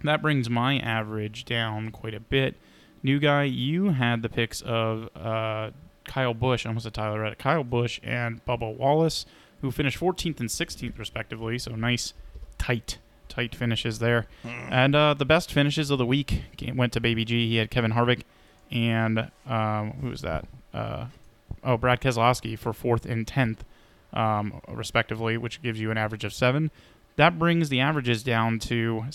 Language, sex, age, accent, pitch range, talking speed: English, male, 20-39, American, 110-135 Hz, 170 wpm